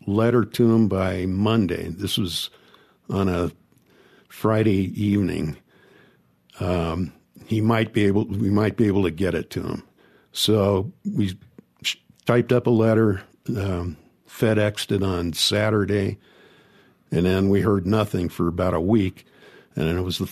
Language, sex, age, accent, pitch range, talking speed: English, male, 60-79, American, 95-115 Hz, 150 wpm